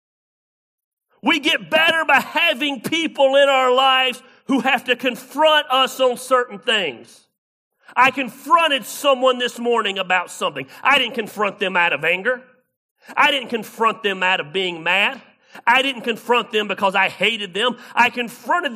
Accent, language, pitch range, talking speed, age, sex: American, English, 205-260 Hz, 155 wpm, 40-59, male